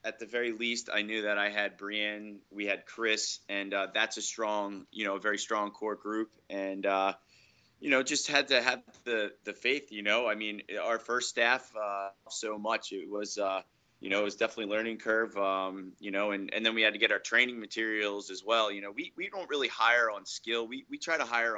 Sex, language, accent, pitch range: male, English, American, 100-115 Hz